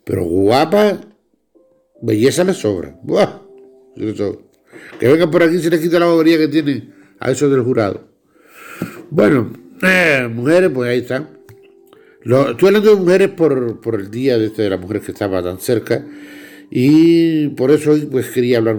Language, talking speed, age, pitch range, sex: Spanish, 170 wpm, 60-79, 115-165 Hz, male